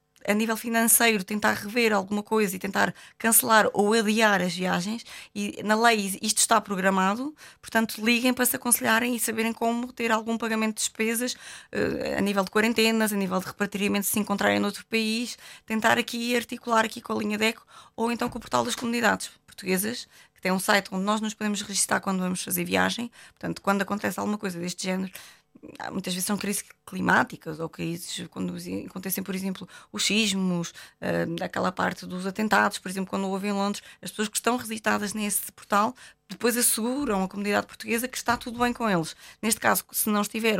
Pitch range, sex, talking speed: 195-230 Hz, female, 195 wpm